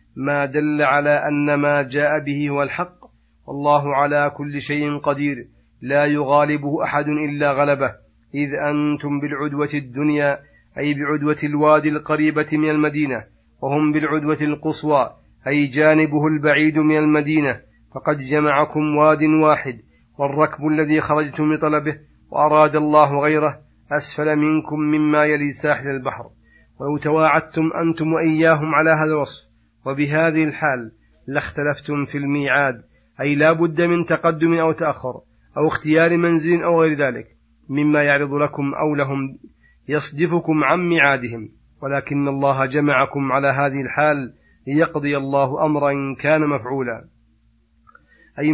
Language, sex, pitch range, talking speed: Arabic, male, 140-155 Hz, 120 wpm